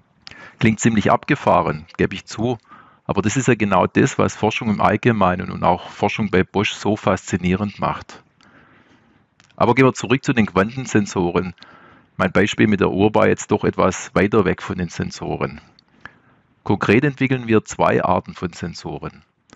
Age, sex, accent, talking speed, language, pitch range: 40-59, male, German, 160 wpm, German, 100-115 Hz